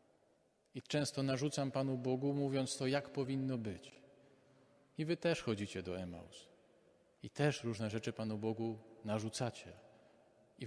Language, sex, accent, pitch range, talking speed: Polish, male, native, 115-140 Hz, 135 wpm